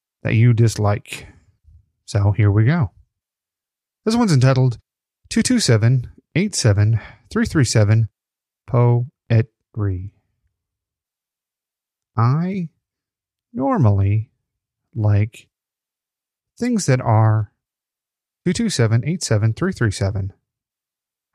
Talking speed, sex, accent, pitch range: 75 wpm, male, American, 100-140 Hz